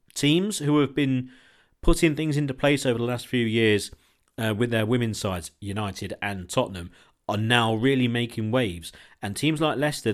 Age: 40-59